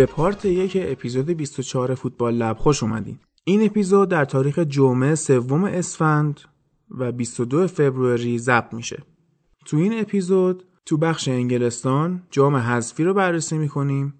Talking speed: 135 wpm